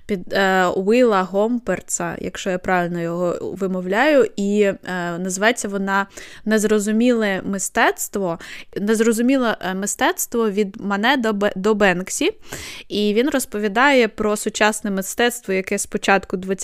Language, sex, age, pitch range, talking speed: Ukrainian, female, 20-39, 190-235 Hz, 95 wpm